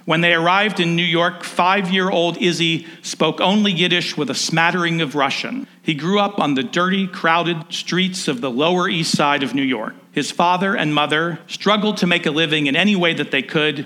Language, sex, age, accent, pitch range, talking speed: English, male, 50-69, American, 150-190 Hz, 205 wpm